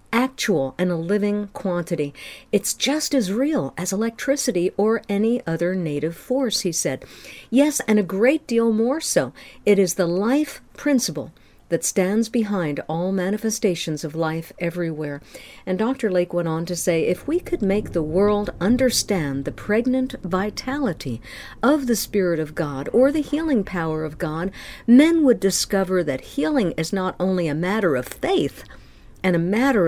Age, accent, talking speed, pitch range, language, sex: 50-69, American, 165 wpm, 170-245 Hz, English, female